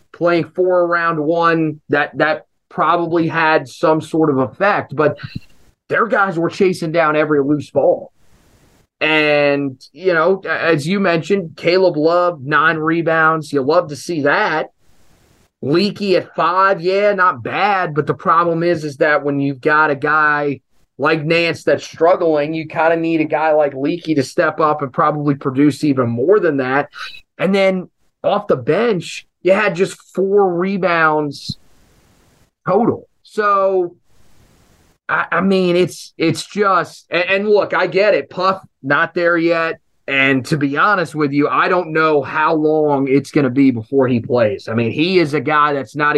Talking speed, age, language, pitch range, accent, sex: 170 wpm, 30-49, English, 145-175 Hz, American, male